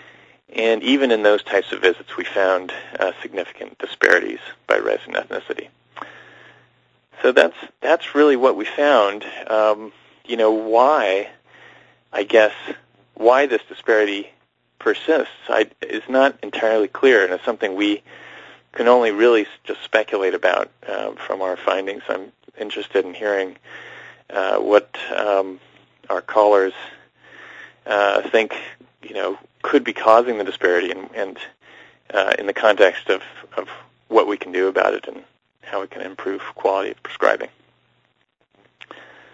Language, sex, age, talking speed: English, male, 30-49, 140 wpm